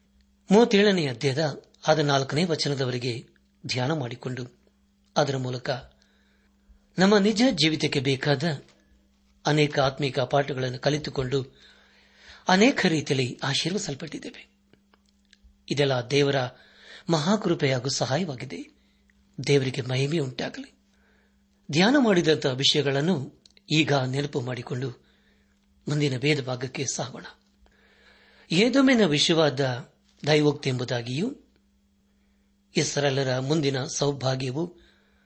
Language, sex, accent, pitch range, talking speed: Kannada, male, native, 120-160 Hz, 75 wpm